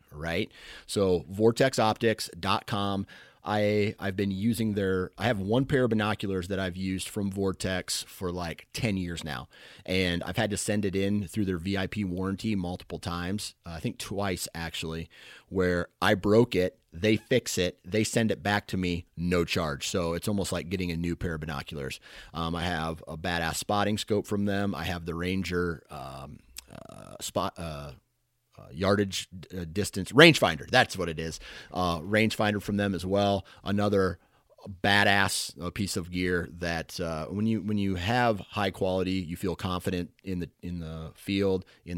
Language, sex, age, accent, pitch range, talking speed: English, male, 30-49, American, 85-105 Hz, 175 wpm